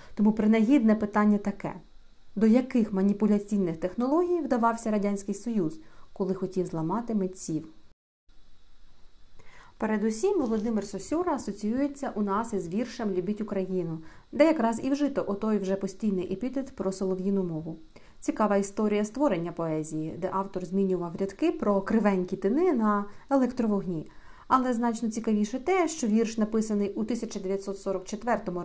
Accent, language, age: native, Ukrainian, 40-59